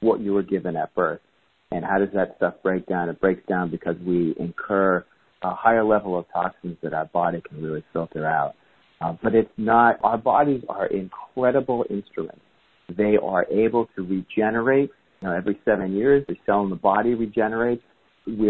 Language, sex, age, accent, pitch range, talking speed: English, male, 40-59, American, 90-110 Hz, 180 wpm